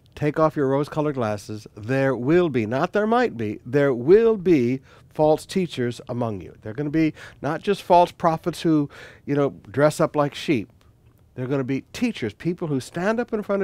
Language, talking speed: English, 205 wpm